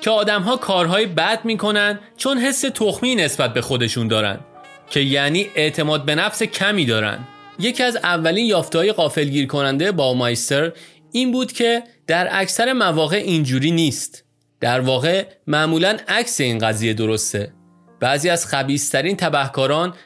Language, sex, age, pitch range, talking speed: Persian, male, 30-49, 140-205 Hz, 140 wpm